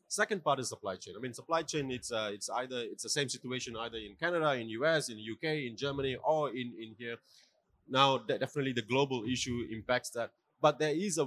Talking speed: 225 wpm